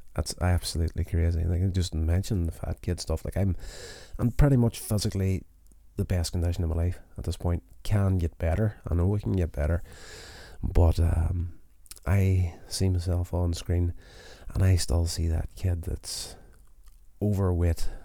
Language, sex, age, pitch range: English, male, 30-49, 85-95 Hz